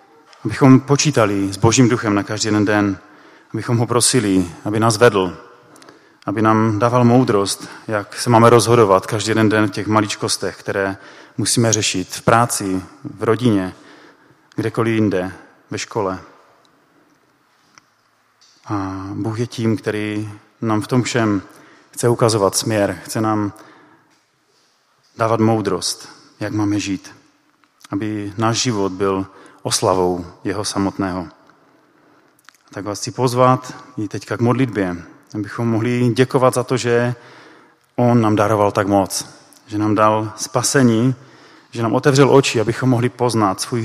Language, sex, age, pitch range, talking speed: Czech, male, 30-49, 100-120 Hz, 135 wpm